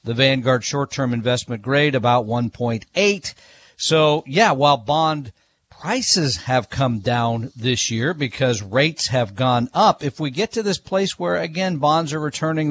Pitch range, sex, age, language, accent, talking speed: 130-180 Hz, male, 50-69, English, American, 160 wpm